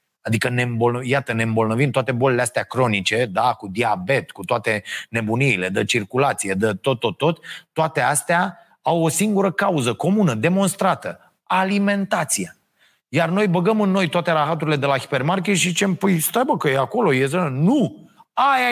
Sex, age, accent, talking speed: male, 30-49, native, 170 wpm